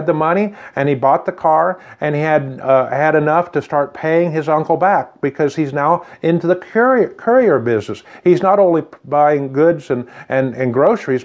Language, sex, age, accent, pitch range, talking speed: English, male, 50-69, American, 135-175 Hz, 190 wpm